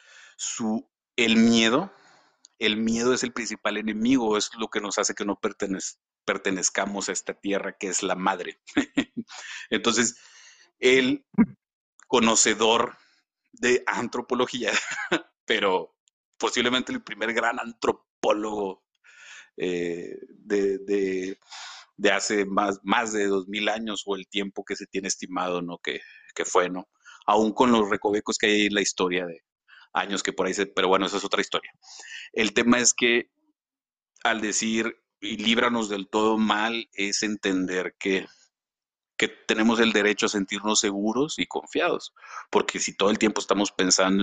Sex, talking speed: male, 150 wpm